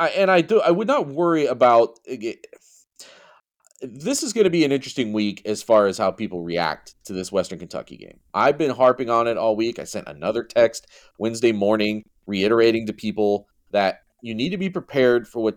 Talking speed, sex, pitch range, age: 195 wpm, male, 95-160 Hz, 40-59